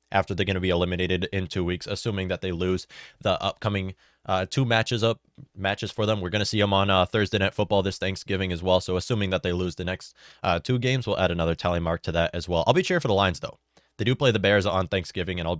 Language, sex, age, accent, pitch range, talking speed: English, male, 20-39, American, 90-115 Hz, 275 wpm